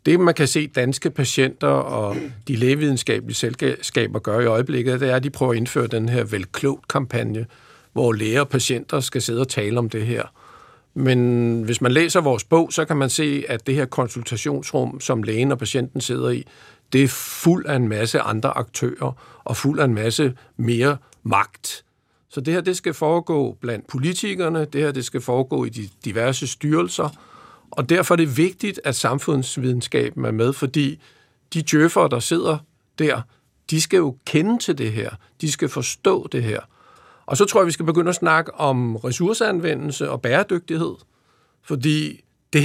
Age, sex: 50-69, male